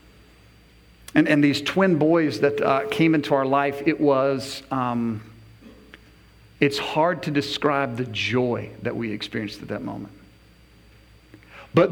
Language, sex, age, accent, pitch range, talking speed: English, male, 50-69, American, 115-145 Hz, 135 wpm